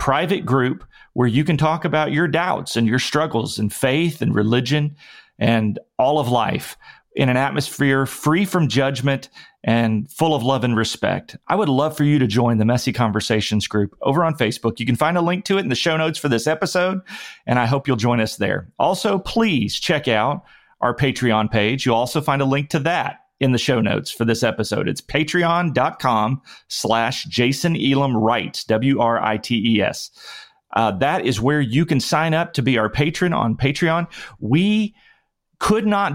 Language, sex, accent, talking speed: English, male, American, 195 wpm